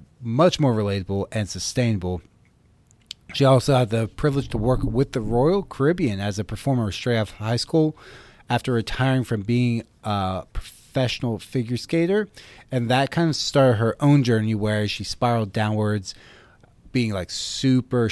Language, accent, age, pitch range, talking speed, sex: English, American, 30-49, 105-130 Hz, 150 wpm, male